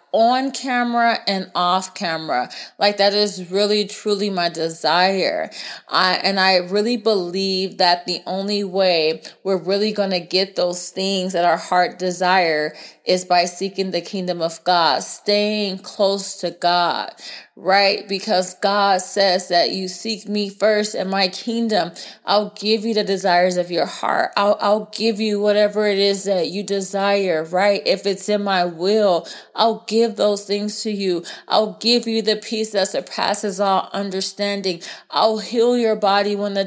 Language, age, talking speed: English, 20-39, 165 wpm